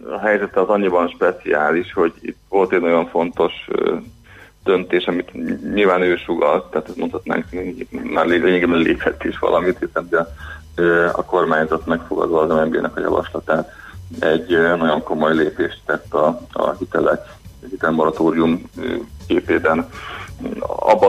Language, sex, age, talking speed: Hungarian, male, 30-49, 130 wpm